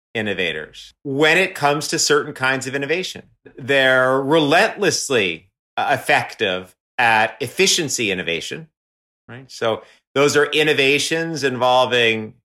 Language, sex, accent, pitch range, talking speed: English, male, American, 125-150 Hz, 100 wpm